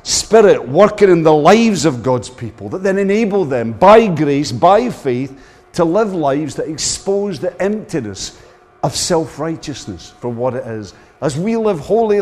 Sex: male